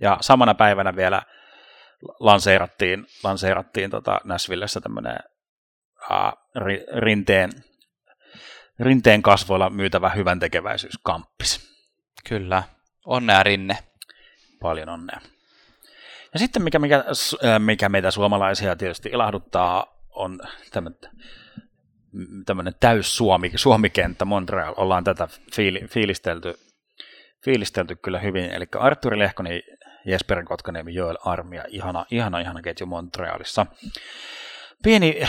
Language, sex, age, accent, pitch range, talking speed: Finnish, male, 30-49, native, 95-120 Hz, 90 wpm